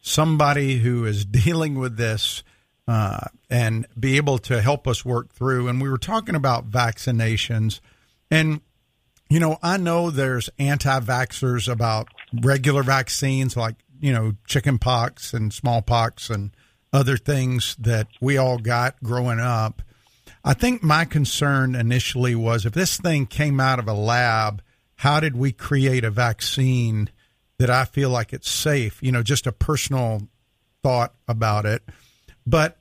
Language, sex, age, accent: English, male, 50-69, American